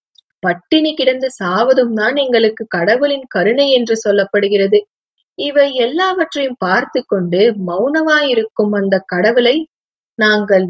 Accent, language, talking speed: native, Tamil, 85 wpm